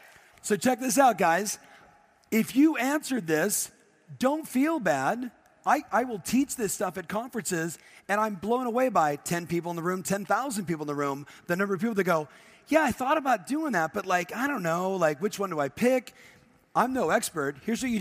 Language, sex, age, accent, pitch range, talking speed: English, male, 40-59, American, 165-225 Hz, 215 wpm